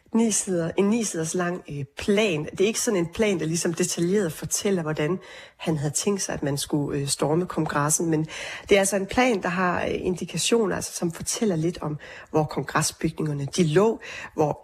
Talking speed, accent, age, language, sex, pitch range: 170 wpm, native, 30-49, Danish, female, 160-195 Hz